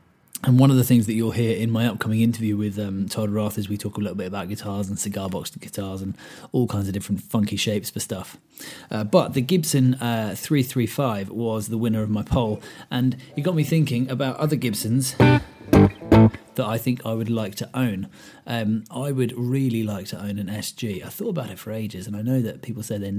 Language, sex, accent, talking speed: English, male, British, 230 wpm